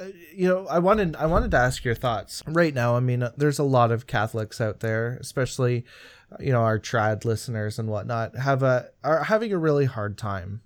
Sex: male